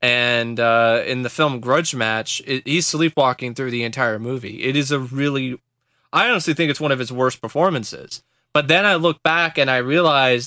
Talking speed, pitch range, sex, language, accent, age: 195 wpm, 120-140 Hz, male, English, American, 20-39